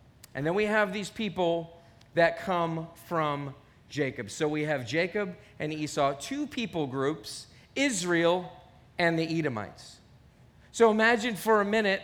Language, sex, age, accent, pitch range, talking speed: English, male, 40-59, American, 170-225 Hz, 140 wpm